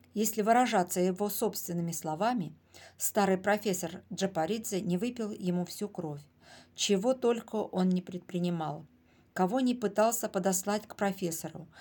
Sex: female